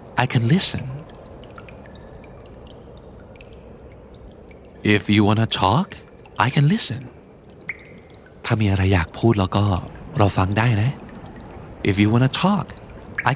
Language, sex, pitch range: Thai, male, 100-150 Hz